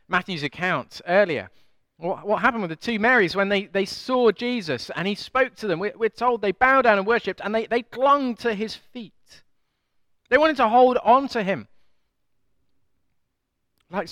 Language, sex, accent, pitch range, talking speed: English, male, British, 135-205 Hz, 185 wpm